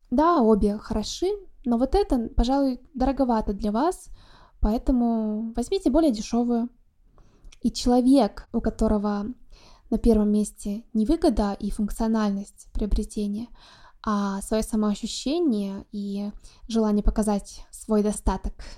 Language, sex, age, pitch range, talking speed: Russian, female, 20-39, 210-255 Hz, 110 wpm